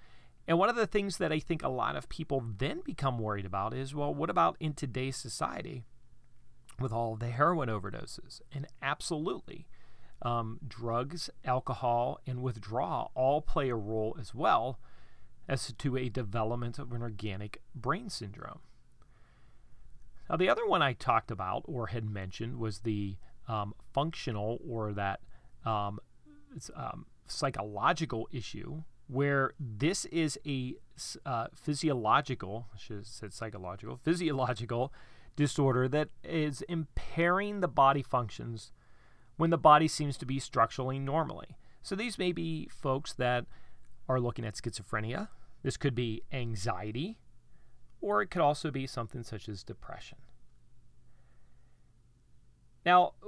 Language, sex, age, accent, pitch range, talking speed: English, male, 40-59, American, 115-145 Hz, 135 wpm